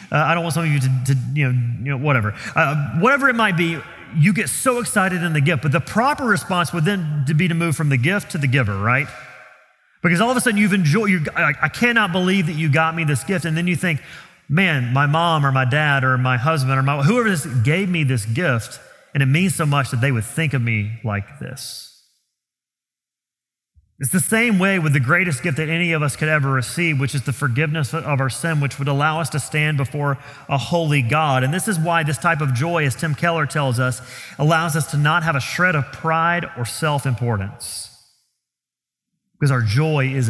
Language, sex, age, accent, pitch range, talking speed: English, male, 30-49, American, 135-175 Hz, 225 wpm